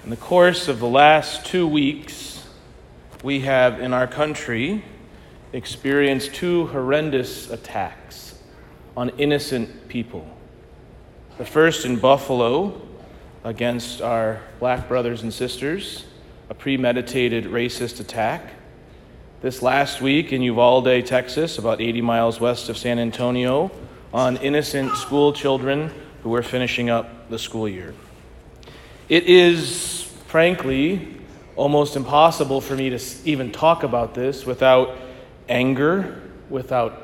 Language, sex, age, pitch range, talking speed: English, male, 40-59, 125-150 Hz, 120 wpm